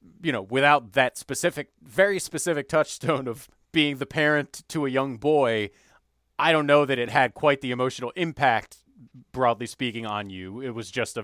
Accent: American